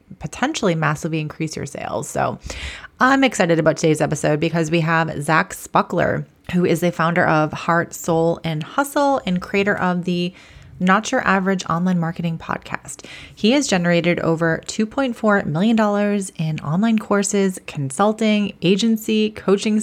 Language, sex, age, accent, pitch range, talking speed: English, female, 30-49, American, 165-215 Hz, 140 wpm